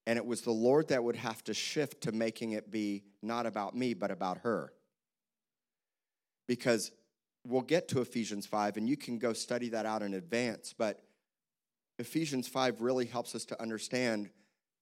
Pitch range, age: 105-120 Hz, 30-49